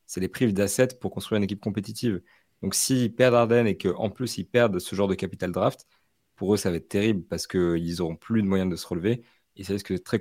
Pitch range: 95-115 Hz